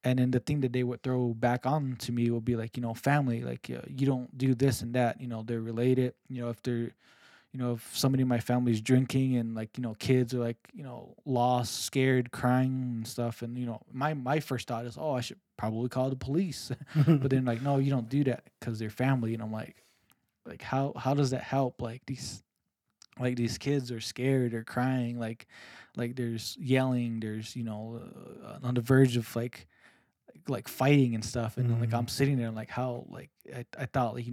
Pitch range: 120-130 Hz